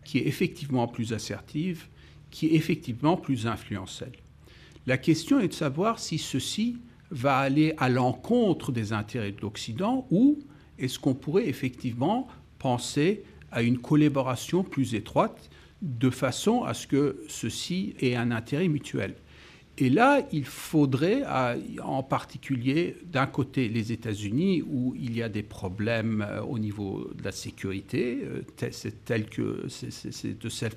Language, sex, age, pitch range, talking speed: French, male, 50-69, 120-155 Hz, 150 wpm